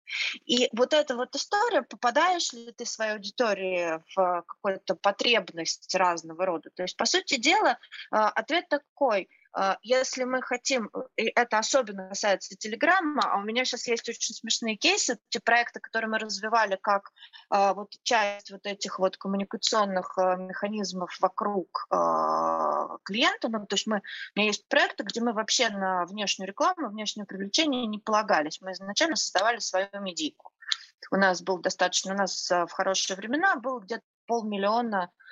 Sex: female